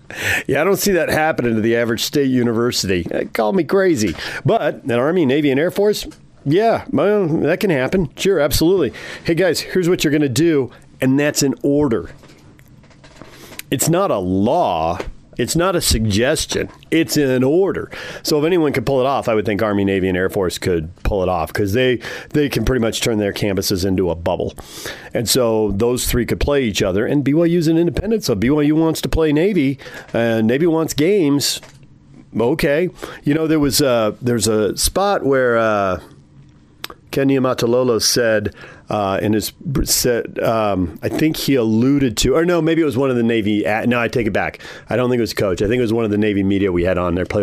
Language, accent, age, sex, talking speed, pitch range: English, American, 40-59, male, 210 wpm, 105-155 Hz